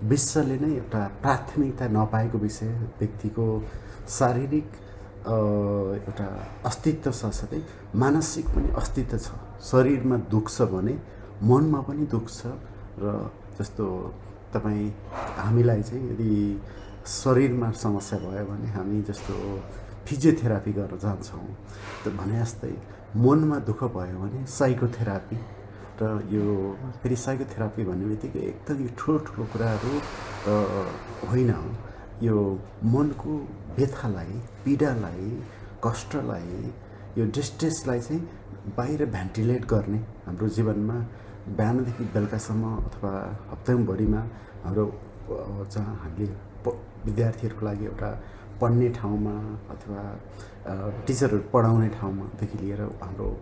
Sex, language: male, English